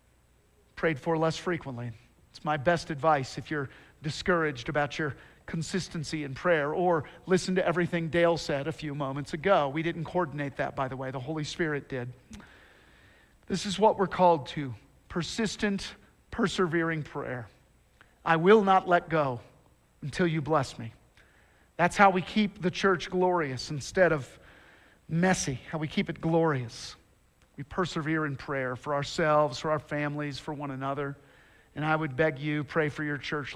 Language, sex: English, male